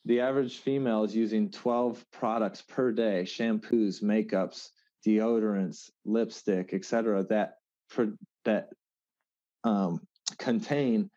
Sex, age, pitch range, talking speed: male, 30-49, 100-115 Hz, 100 wpm